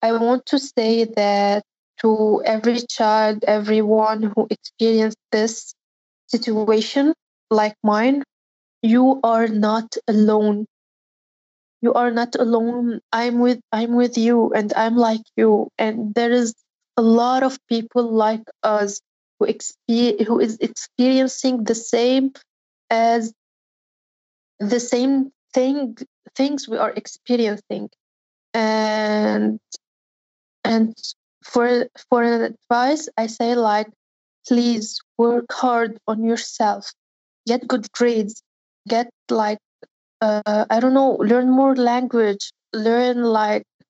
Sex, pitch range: female, 220-245 Hz